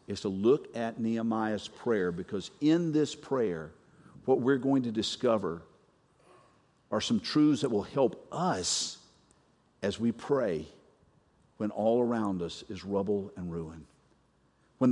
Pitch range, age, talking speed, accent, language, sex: 105-155 Hz, 50-69, 135 wpm, American, English, male